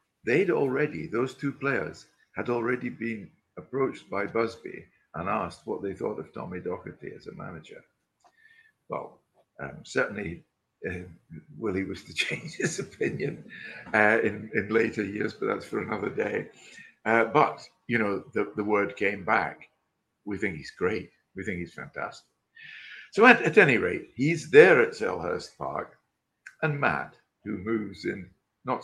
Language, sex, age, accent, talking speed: English, male, 60-79, British, 155 wpm